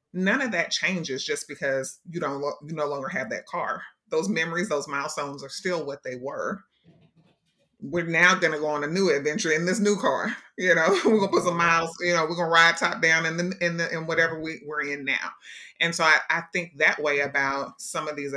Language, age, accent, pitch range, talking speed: English, 30-49, American, 150-185 Hz, 240 wpm